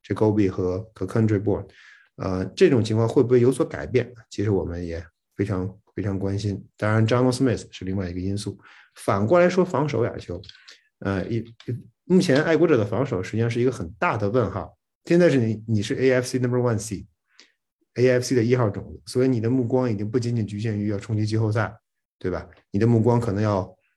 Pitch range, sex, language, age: 100-125 Hz, male, Chinese, 50-69